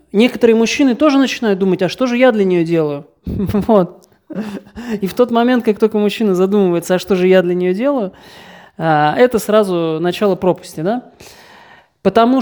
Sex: male